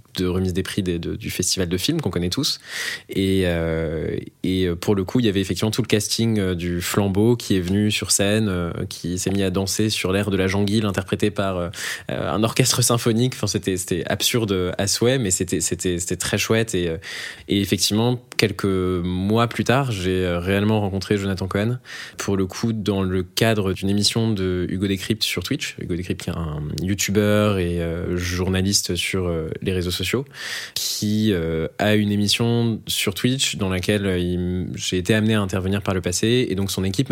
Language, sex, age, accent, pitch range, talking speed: French, male, 20-39, French, 90-105 Hz, 200 wpm